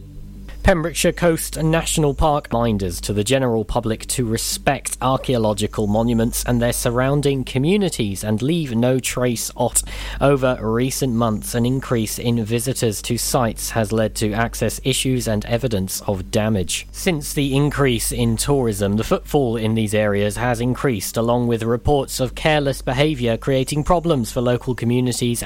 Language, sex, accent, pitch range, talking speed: English, male, British, 115-145 Hz, 150 wpm